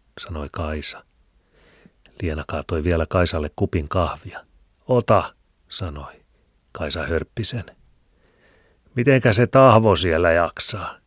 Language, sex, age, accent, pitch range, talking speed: Finnish, male, 40-59, native, 80-110 Hz, 90 wpm